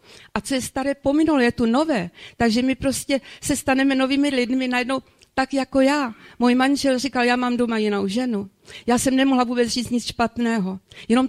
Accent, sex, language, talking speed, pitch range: native, female, Czech, 185 wpm, 225-270 Hz